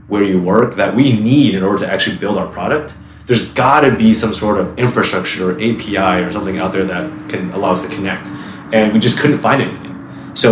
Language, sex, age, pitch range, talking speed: English, male, 30-49, 90-115 Hz, 230 wpm